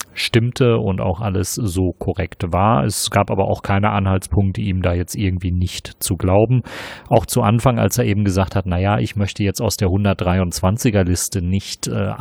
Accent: German